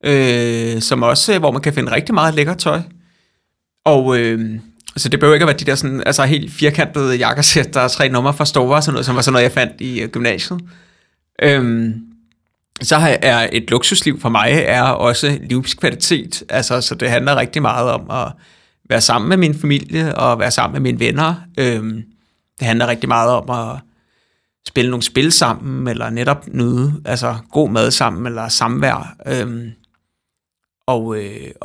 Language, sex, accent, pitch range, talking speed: Danish, male, native, 115-145 Hz, 180 wpm